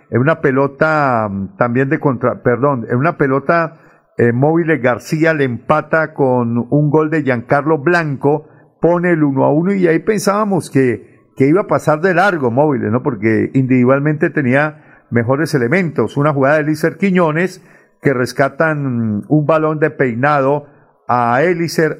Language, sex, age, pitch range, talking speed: Spanish, male, 50-69, 135-165 Hz, 155 wpm